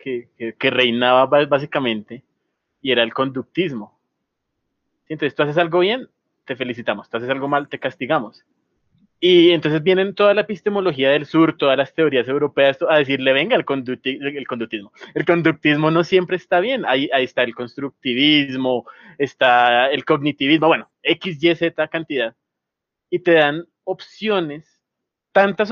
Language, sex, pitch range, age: Spanish, male, 130-175 Hz, 20-39